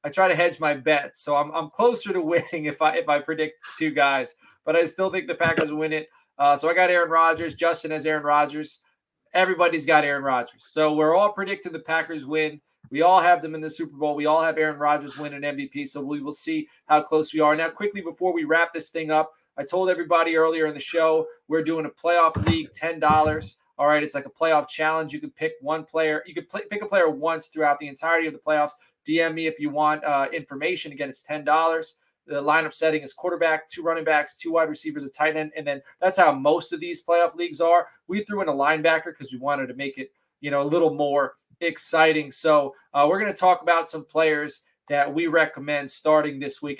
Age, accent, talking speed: 20-39, American, 235 wpm